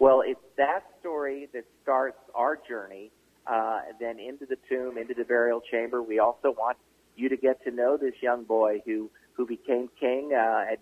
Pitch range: 110-130 Hz